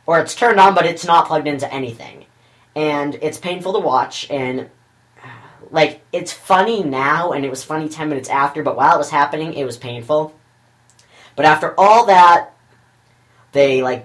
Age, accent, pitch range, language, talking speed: 10-29, American, 135-190 Hz, English, 175 wpm